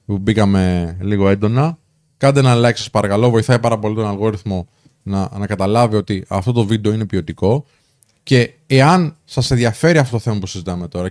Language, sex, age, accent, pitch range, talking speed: Greek, male, 20-39, native, 110-145 Hz, 180 wpm